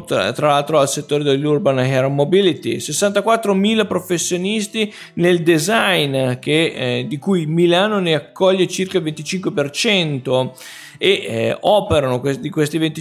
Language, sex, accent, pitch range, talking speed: Italian, male, native, 145-190 Hz, 120 wpm